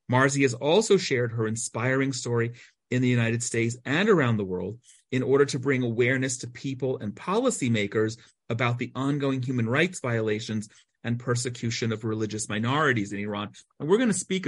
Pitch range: 110-135 Hz